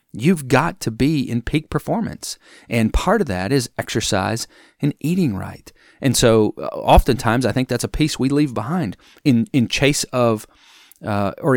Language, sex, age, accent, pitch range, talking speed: English, male, 40-59, American, 100-130 Hz, 170 wpm